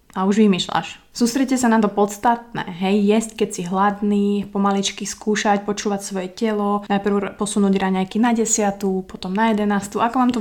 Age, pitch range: 20-39, 195-215 Hz